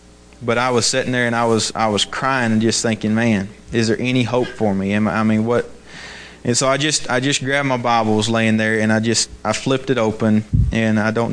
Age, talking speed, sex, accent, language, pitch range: 30-49, 255 wpm, male, American, English, 105-120 Hz